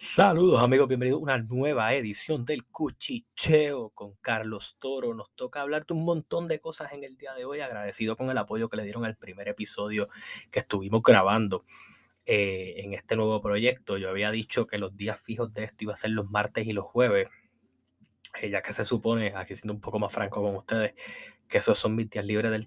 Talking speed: 210 wpm